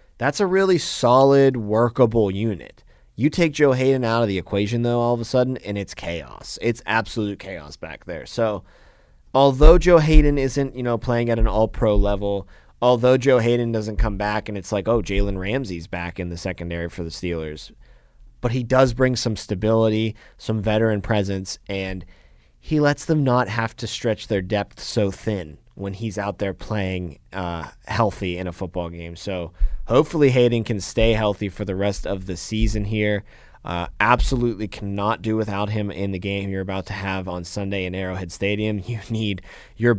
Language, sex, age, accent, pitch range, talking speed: English, male, 30-49, American, 95-115 Hz, 185 wpm